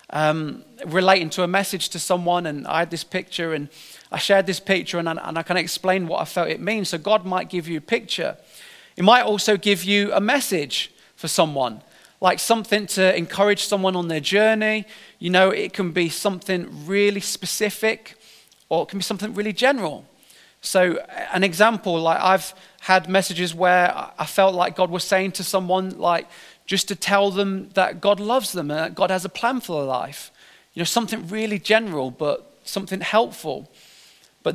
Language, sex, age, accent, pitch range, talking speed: English, male, 30-49, British, 170-205 Hz, 190 wpm